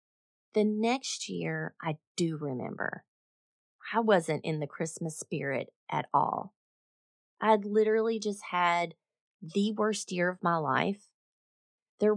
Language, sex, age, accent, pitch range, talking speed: English, female, 30-49, American, 170-220 Hz, 125 wpm